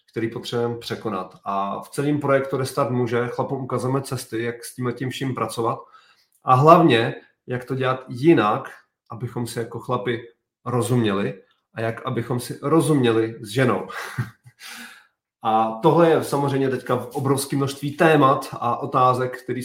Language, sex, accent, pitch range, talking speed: Czech, male, native, 115-130 Hz, 140 wpm